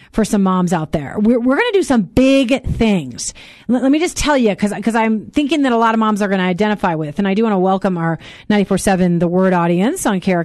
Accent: American